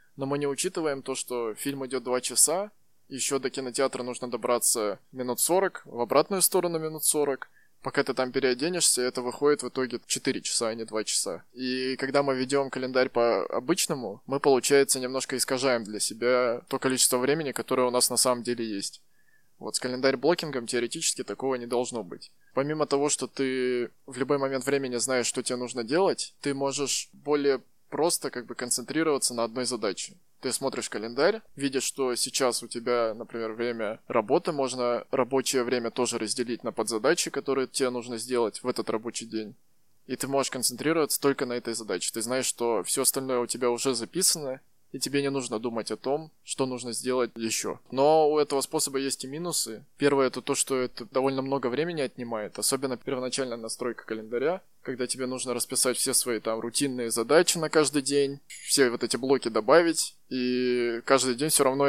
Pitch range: 120-140 Hz